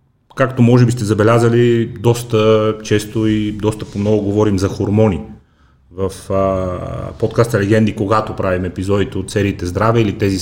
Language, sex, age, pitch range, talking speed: Bulgarian, male, 30-49, 110-130 Hz, 145 wpm